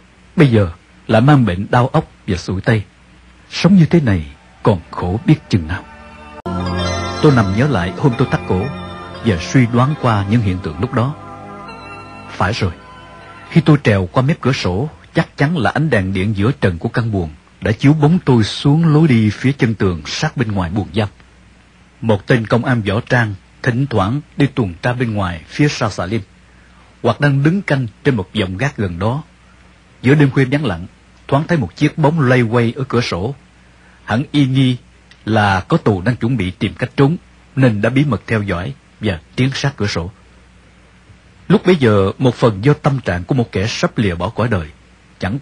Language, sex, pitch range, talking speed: English, male, 95-135 Hz, 200 wpm